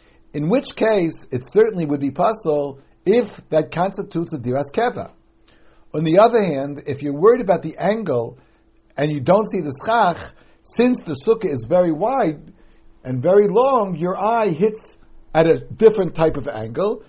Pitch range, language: 150-220 Hz, English